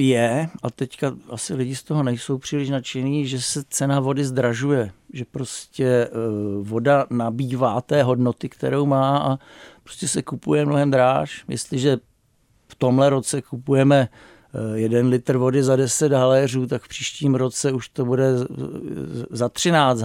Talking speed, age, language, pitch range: 145 wpm, 50-69, Czech, 120-140 Hz